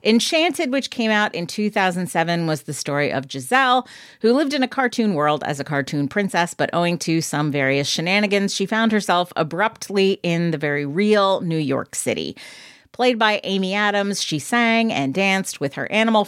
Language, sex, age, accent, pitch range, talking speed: English, female, 40-59, American, 150-220 Hz, 180 wpm